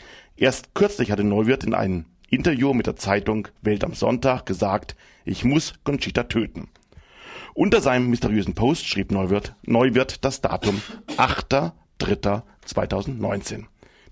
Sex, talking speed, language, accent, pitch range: male, 120 wpm, German, German, 100-130 Hz